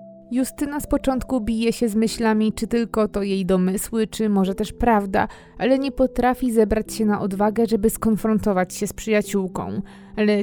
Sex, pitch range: female, 195-225 Hz